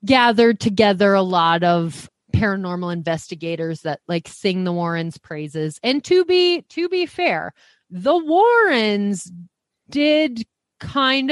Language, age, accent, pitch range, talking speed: English, 30-49, American, 160-205 Hz, 120 wpm